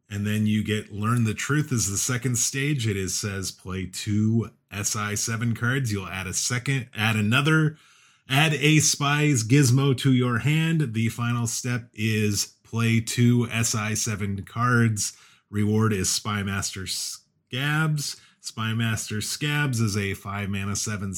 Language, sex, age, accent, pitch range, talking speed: English, male, 30-49, American, 105-125 Hz, 155 wpm